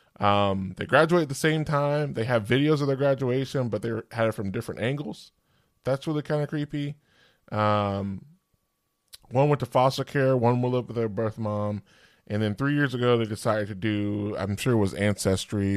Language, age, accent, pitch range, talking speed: English, 20-39, American, 100-135 Hz, 200 wpm